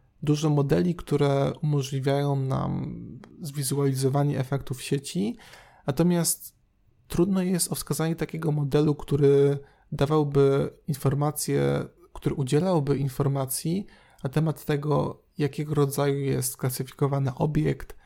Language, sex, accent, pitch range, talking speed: Polish, male, native, 130-150 Hz, 95 wpm